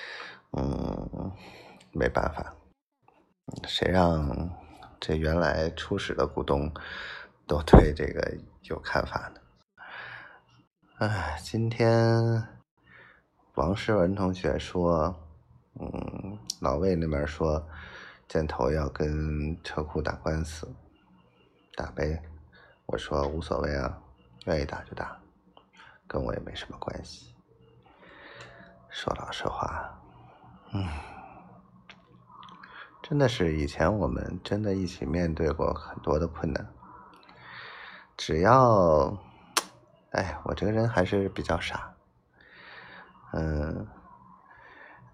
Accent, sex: native, male